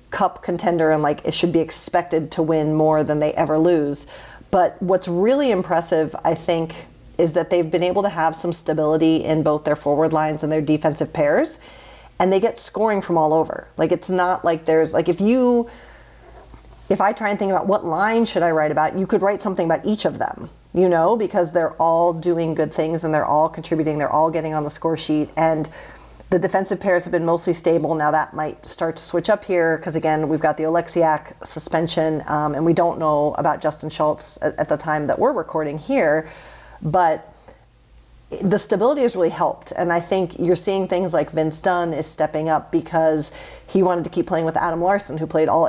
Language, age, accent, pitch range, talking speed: English, 40-59, American, 155-180 Hz, 215 wpm